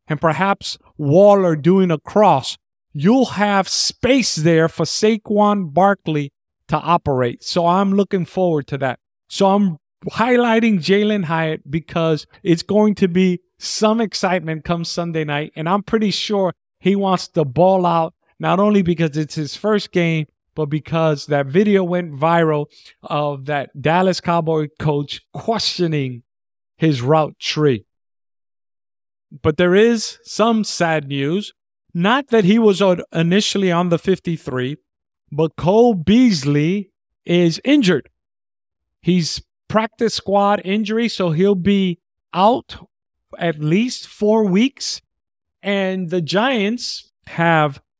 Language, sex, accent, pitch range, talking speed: English, male, American, 160-205 Hz, 130 wpm